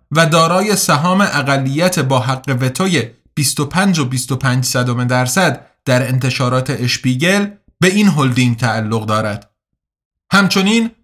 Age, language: 30-49, Persian